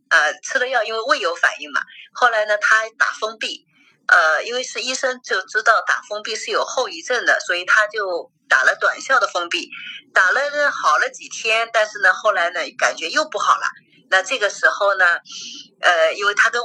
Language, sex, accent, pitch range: Chinese, female, native, 205-295 Hz